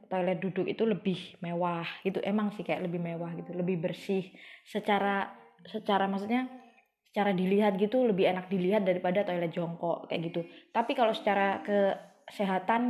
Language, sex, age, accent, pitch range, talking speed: Indonesian, female, 20-39, native, 185-230 Hz, 150 wpm